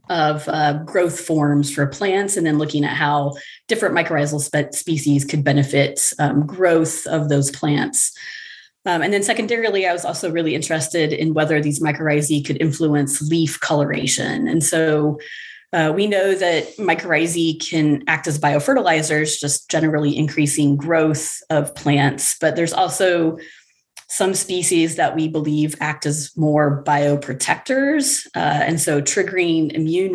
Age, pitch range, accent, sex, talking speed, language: 30-49, 145-170 Hz, American, female, 140 wpm, English